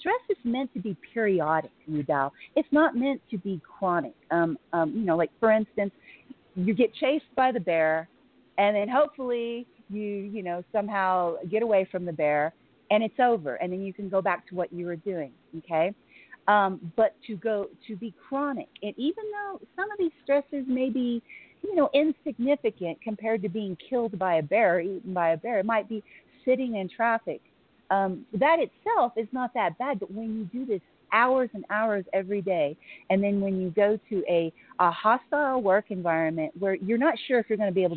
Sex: female